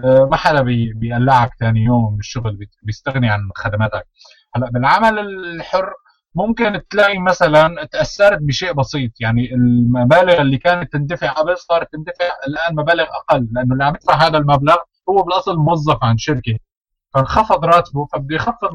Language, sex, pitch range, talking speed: Arabic, male, 130-175 Hz, 140 wpm